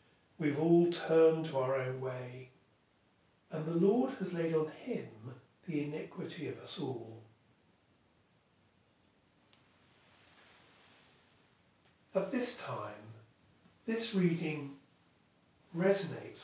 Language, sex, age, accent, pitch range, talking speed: English, male, 40-59, British, 150-195 Hz, 90 wpm